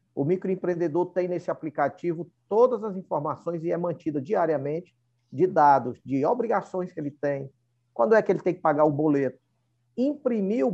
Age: 50-69